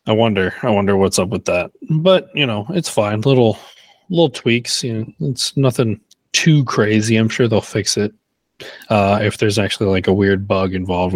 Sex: male